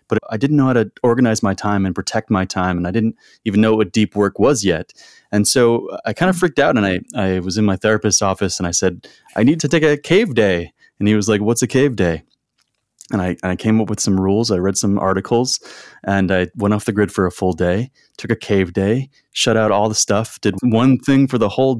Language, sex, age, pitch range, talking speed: English, male, 20-39, 95-115 Hz, 260 wpm